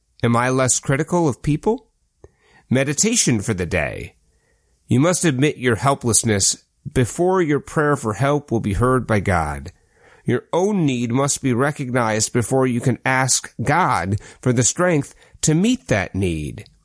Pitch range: 115-150 Hz